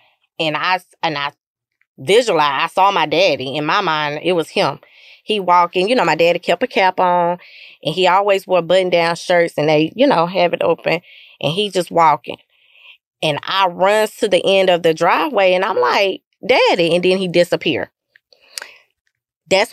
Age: 20-39